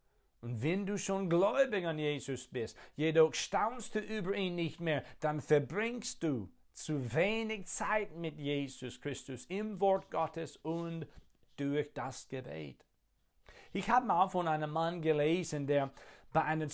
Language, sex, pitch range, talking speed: German, male, 125-180 Hz, 145 wpm